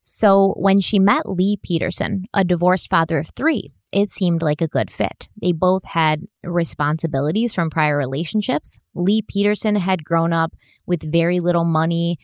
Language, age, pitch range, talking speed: English, 20-39, 155-195 Hz, 160 wpm